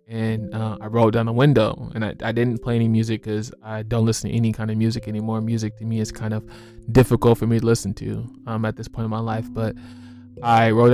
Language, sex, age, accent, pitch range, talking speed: English, male, 20-39, American, 110-115 Hz, 250 wpm